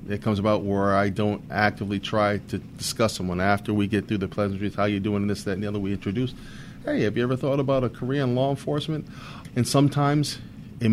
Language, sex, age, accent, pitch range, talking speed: English, male, 40-59, American, 105-125 Hz, 230 wpm